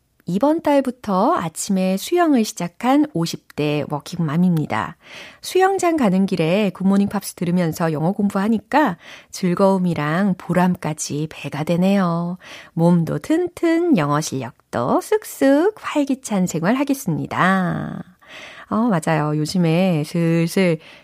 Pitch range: 165-235 Hz